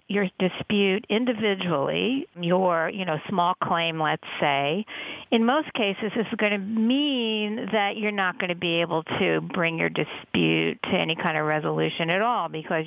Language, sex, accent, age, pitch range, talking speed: English, female, American, 50-69, 165-215 Hz, 175 wpm